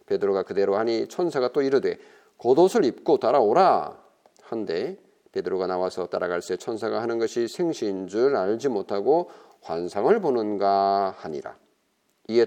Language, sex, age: Korean, male, 40-59